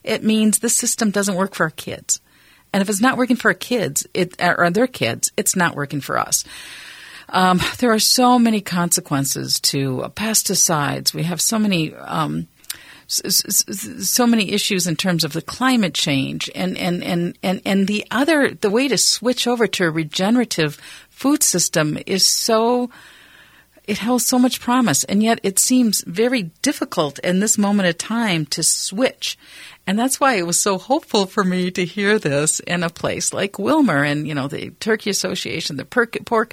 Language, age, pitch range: English, 50-69, 165-235 Hz